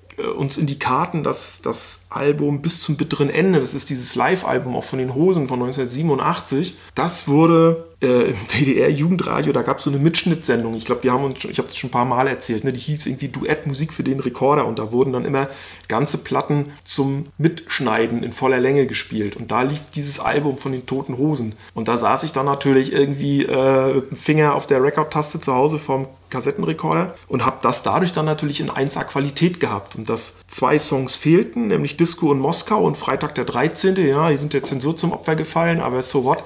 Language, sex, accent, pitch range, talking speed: German, male, German, 125-150 Hz, 210 wpm